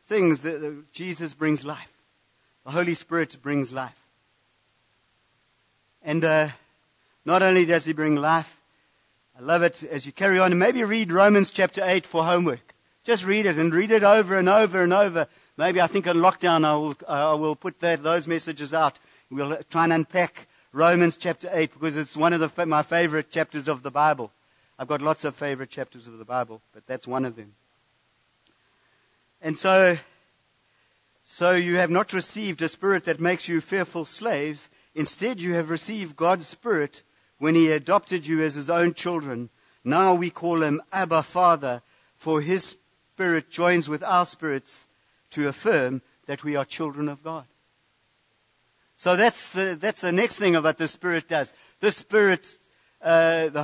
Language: English